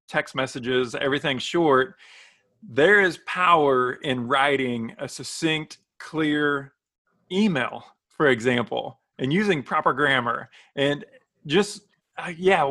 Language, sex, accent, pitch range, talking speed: English, male, American, 130-175 Hz, 105 wpm